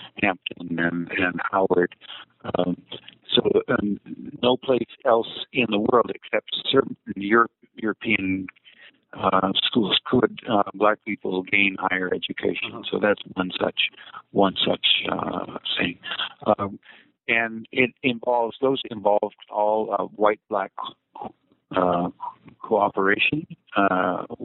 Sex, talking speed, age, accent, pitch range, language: male, 115 wpm, 50-69, American, 90-110 Hz, English